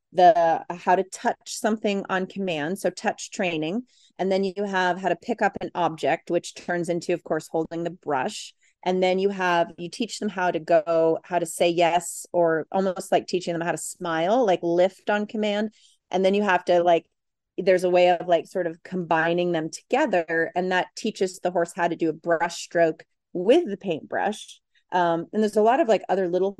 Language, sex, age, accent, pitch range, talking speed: English, female, 30-49, American, 170-205 Hz, 210 wpm